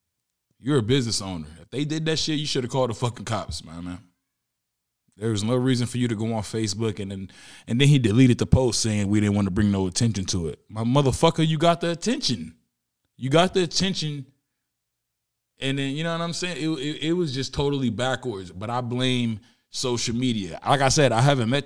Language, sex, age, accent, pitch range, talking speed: English, male, 20-39, American, 115-155 Hz, 225 wpm